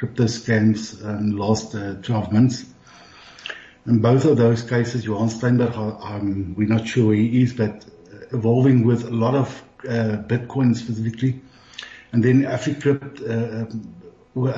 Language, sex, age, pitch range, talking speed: English, male, 60-79, 115-140 Hz, 150 wpm